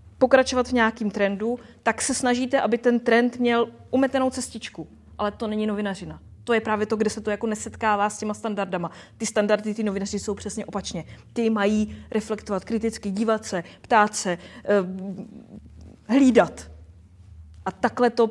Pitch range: 190-230 Hz